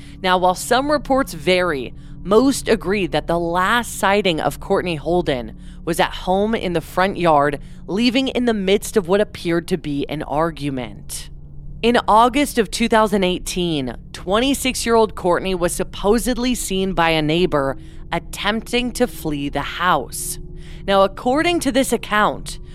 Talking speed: 140 wpm